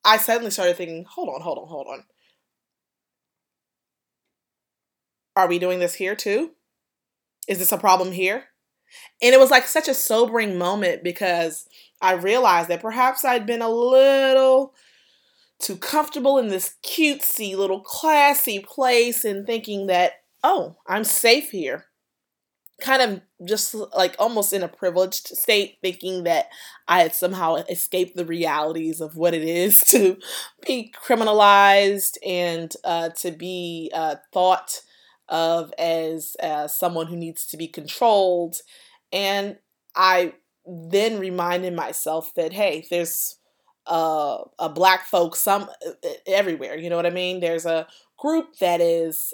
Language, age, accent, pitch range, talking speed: English, 20-39, American, 170-230 Hz, 140 wpm